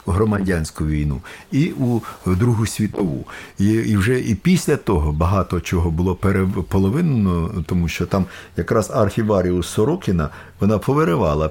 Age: 50-69